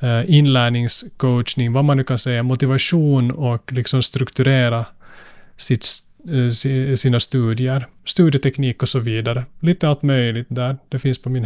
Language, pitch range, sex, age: Swedish, 120-145 Hz, male, 30-49